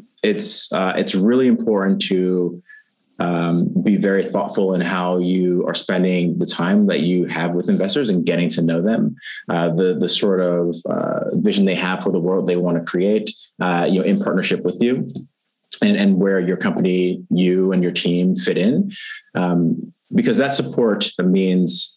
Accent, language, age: American, English, 30-49